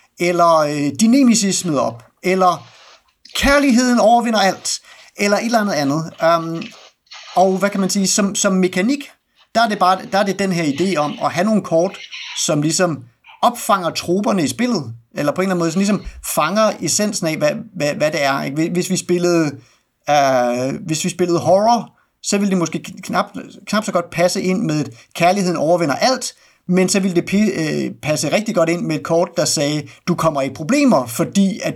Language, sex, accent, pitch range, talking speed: Danish, male, native, 150-205 Hz, 185 wpm